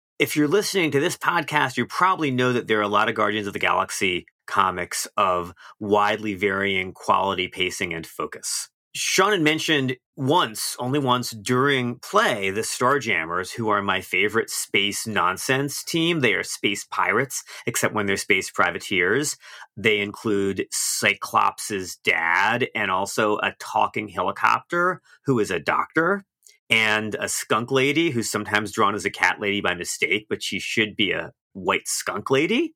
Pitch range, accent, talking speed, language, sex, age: 100-130 Hz, American, 160 wpm, English, male, 30-49